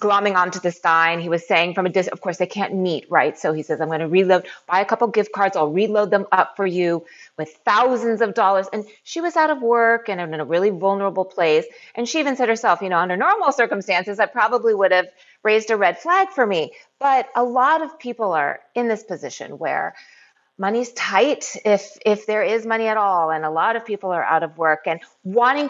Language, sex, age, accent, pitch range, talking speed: English, female, 30-49, American, 180-245 Hz, 235 wpm